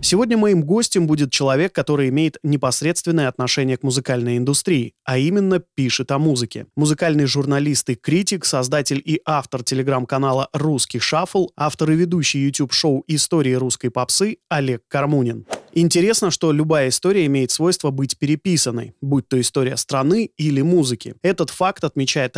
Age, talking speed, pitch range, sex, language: 20-39, 145 wpm, 130-170 Hz, male, Russian